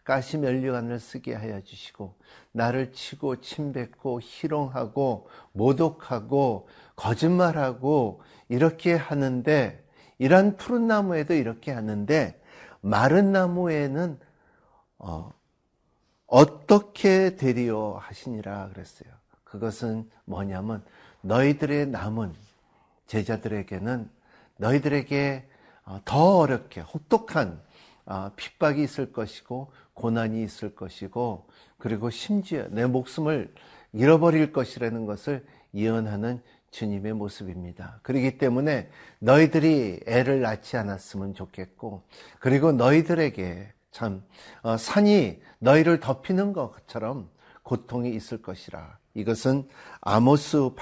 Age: 50-69